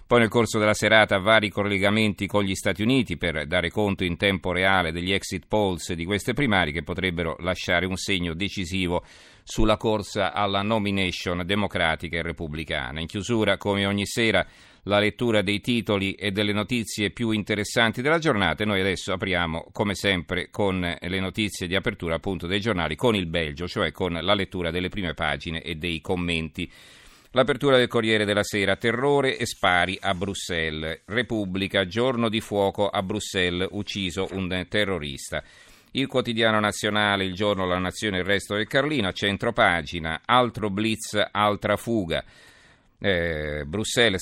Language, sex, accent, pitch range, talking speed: Italian, male, native, 90-110 Hz, 160 wpm